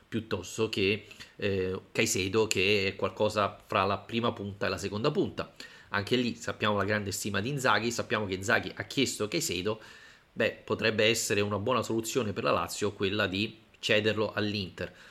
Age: 30-49